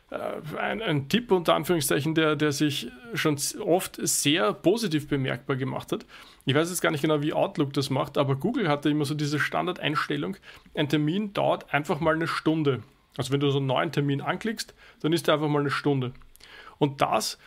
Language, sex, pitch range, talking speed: German, male, 145-185 Hz, 190 wpm